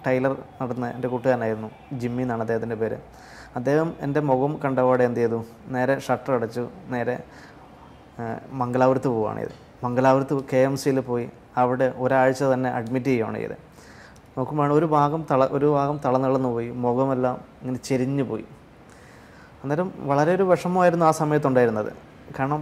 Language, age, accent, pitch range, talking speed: Malayalam, 20-39, native, 125-145 Hz, 125 wpm